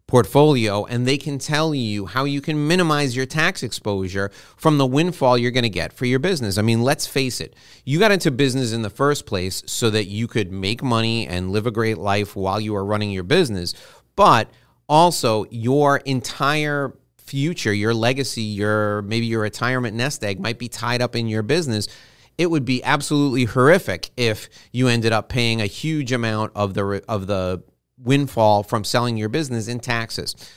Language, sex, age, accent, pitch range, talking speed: English, male, 30-49, American, 105-130 Hz, 190 wpm